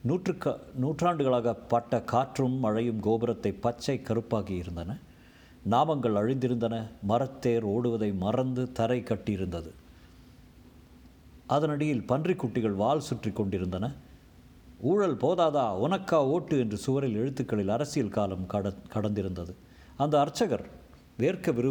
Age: 50-69